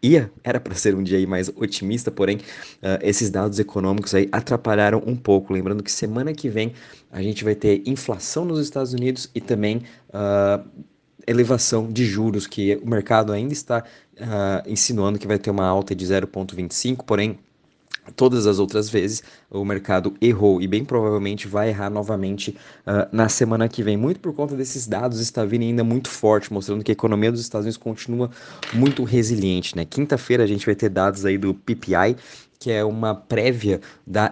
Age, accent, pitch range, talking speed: 20-39, Brazilian, 100-120 Hz, 175 wpm